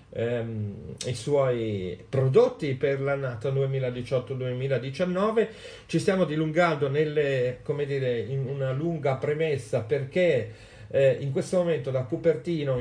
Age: 50-69